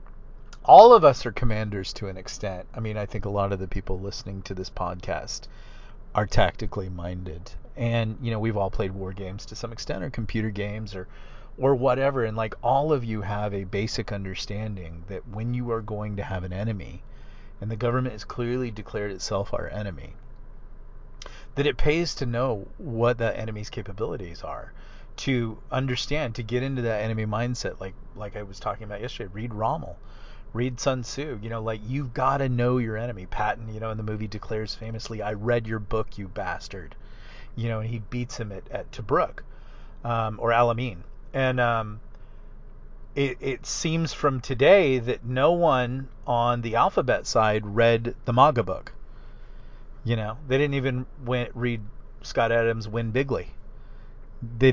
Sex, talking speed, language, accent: male, 180 wpm, English, American